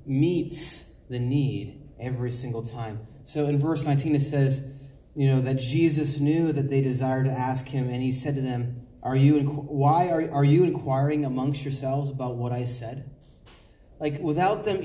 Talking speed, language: 180 wpm, English